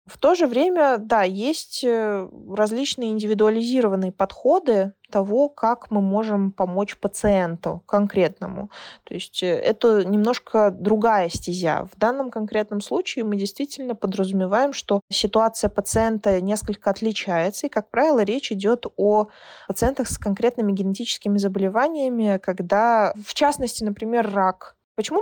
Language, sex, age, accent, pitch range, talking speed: Russian, female, 20-39, native, 195-230 Hz, 120 wpm